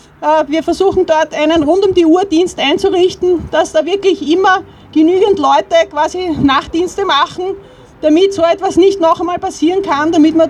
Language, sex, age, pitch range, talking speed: German, female, 30-49, 295-335 Hz, 145 wpm